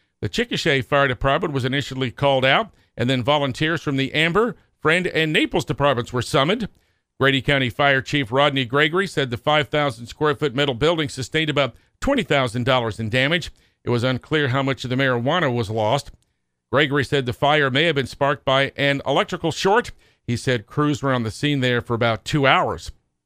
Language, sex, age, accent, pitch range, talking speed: English, male, 50-69, American, 130-155 Hz, 185 wpm